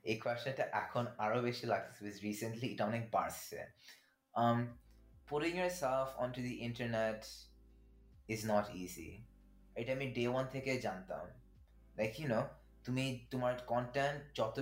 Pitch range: 110-135 Hz